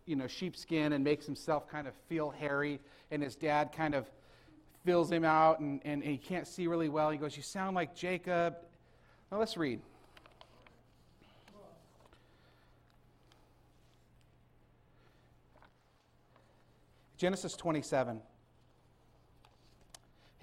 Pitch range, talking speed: 120-160 Hz, 110 wpm